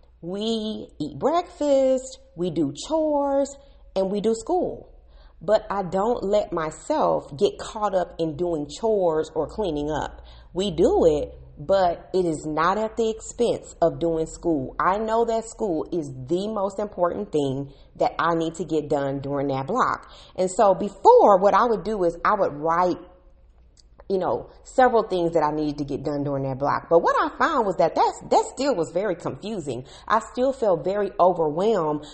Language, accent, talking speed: English, American, 175 wpm